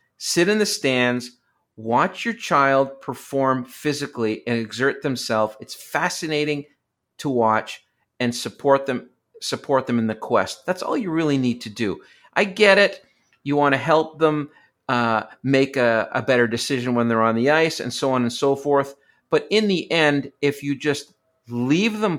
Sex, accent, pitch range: male, American, 120-155 Hz